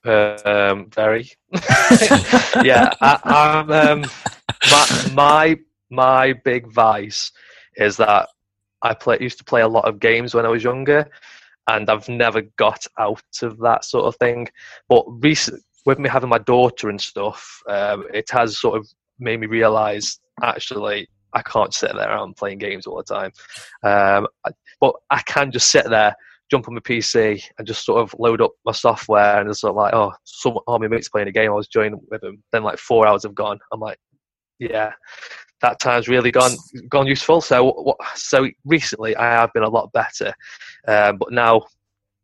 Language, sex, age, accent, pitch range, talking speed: English, male, 20-39, British, 105-140 Hz, 180 wpm